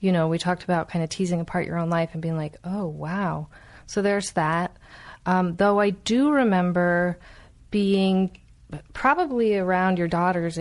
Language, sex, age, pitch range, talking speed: English, female, 30-49, 165-200 Hz, 170 wpm